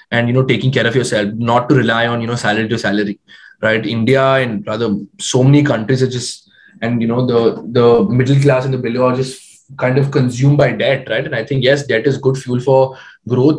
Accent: Indian